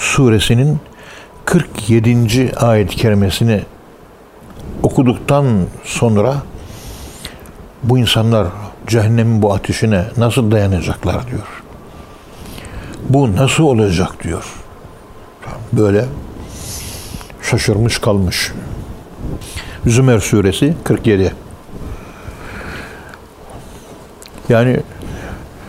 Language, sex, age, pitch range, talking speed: Turkish, male, 60-79, 100-130 Hz, 60 wpm